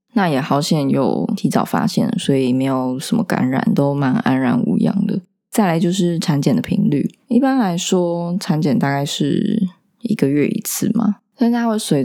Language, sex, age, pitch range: Chinese, female, 20-39, 150-215 Hz